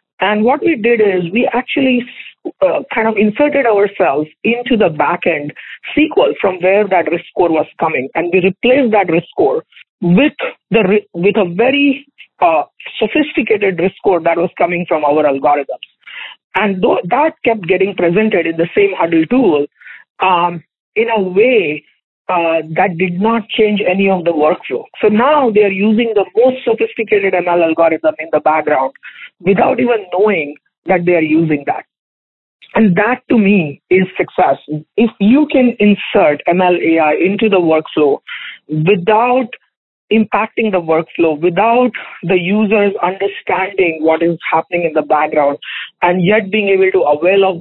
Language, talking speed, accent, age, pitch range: English, 155 wpm, Indian, 50-69, 160-225 Hz